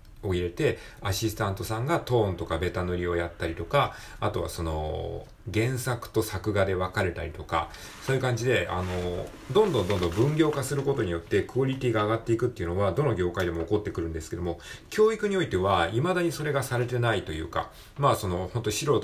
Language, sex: Japanese, male